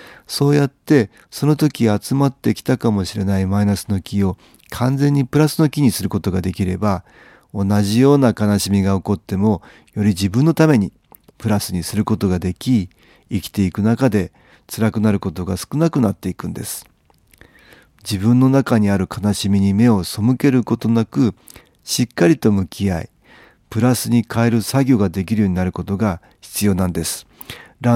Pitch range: 95-125 Hz